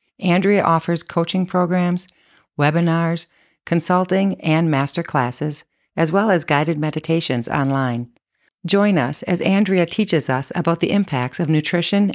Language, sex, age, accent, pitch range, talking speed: English, female, 40-59, American, 145-175 Hz, 130 wpm